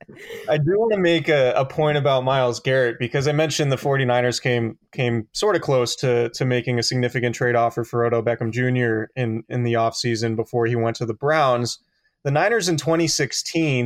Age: 20-39